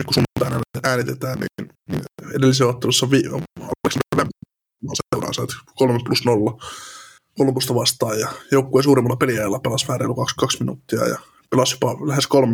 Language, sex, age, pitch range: Finnish, male, 20-39, 125-135 Hz